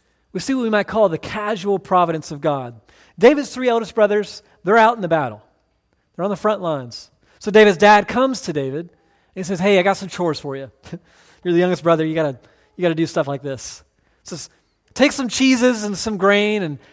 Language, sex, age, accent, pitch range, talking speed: English, male, 40-59, American, 145-210 Hz, 215 wpm